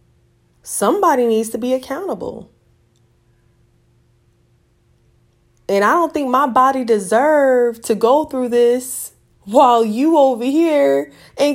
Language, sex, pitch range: English, female, 180-245 Hz